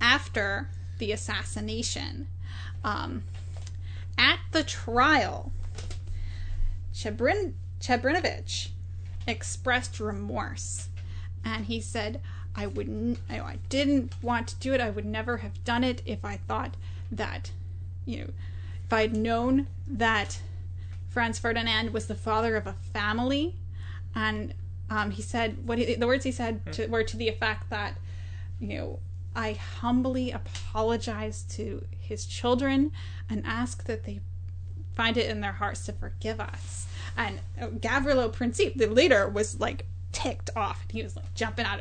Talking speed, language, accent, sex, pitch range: 135 wpm, English, American, female, 90-105 Hz